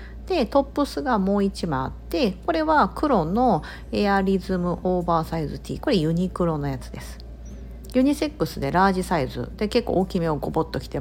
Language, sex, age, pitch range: Japanese, female, 50-69, 155-245 Hz